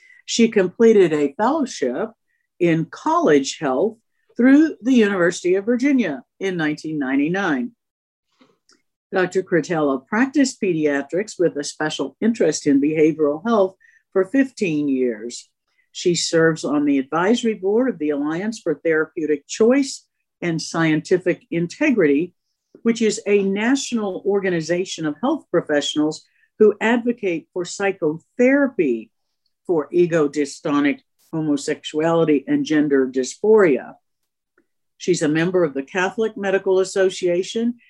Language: English